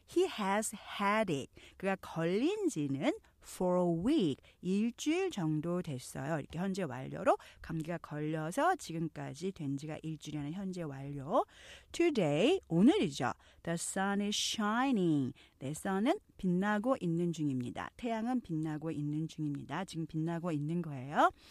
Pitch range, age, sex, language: 160-255 Hz, 40-59, female, Korean